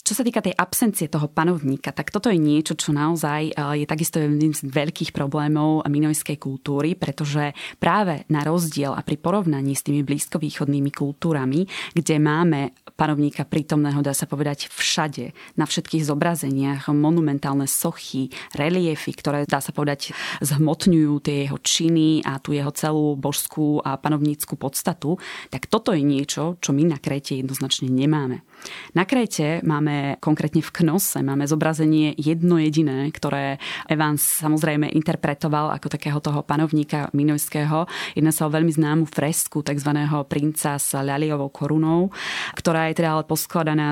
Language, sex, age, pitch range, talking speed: Slovak, female, 20-39, 145-165 Hz, 145 wpm